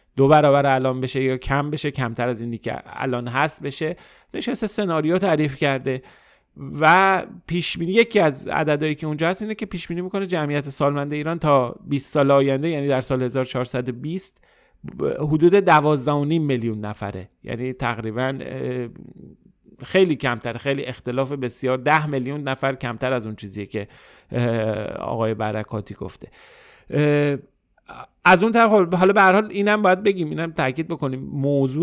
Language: Persian